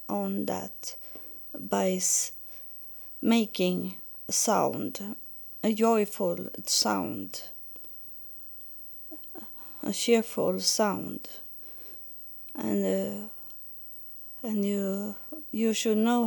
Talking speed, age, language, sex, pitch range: 70 wpm, 30-49, English, female, 185-230 Hz